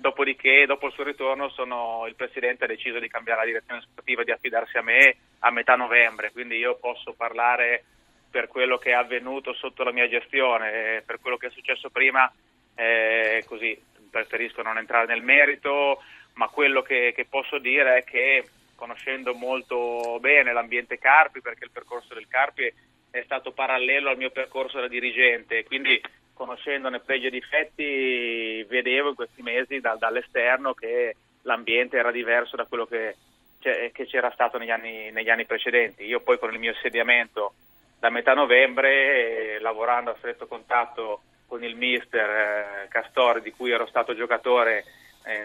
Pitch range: 115-135 Hz